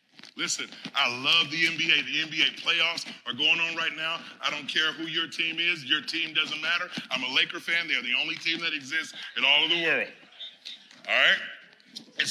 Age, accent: 40-59, American